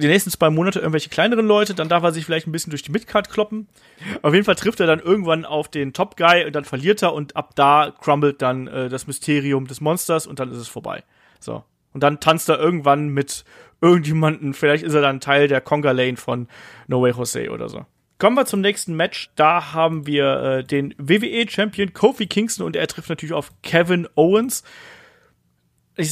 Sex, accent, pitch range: male, German, 145-190 Hz